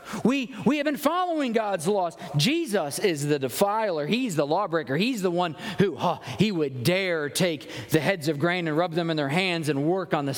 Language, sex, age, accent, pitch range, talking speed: English, male, 40-59, American, 160-220 Hz, 215 wpm